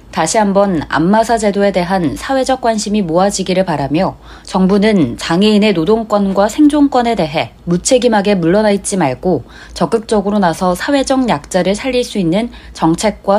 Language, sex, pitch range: Korean, female, 165-225 Hz